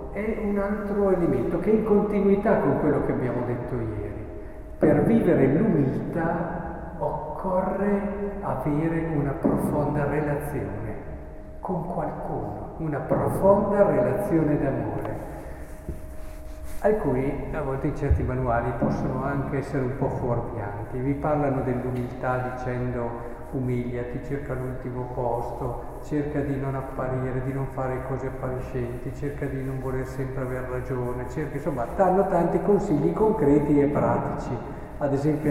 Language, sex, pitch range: Italian, male, 125-165 Hz